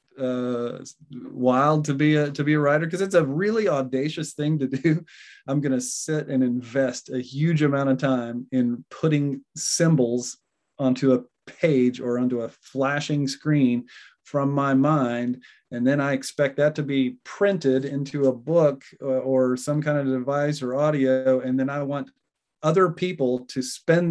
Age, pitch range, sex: 30-49, 130-155 Hz, male